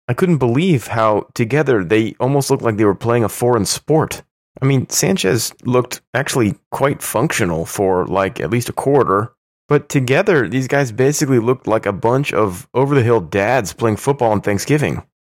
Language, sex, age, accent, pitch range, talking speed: English, male, 30-49, American, 95-130 Hz, 175 wpm